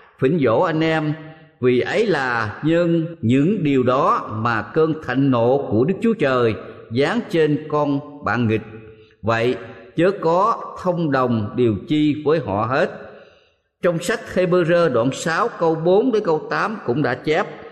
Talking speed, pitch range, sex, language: 160 wpm, 120-165 Hz, male, Vietnamese